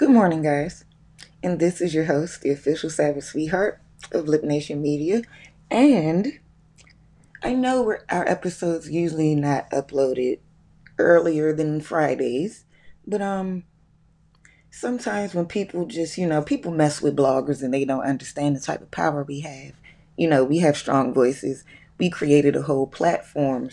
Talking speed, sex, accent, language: 155 wpm, female, American, English